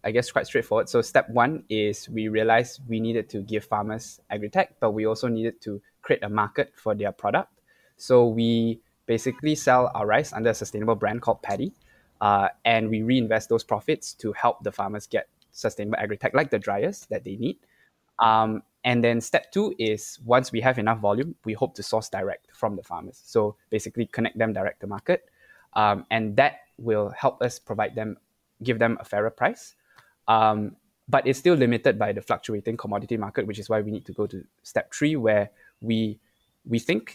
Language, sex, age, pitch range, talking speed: English, male, 10-29, 110-125 Hz, 195 wpm